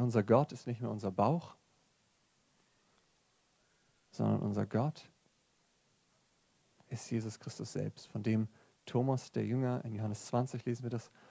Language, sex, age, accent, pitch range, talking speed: German, male, 40-59, German, 110-130 Hz, 135 wpm